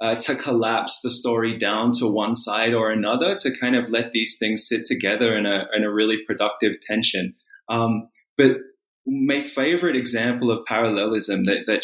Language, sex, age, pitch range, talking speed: English, male, 20-39, 105-130 Hz, 175 wpm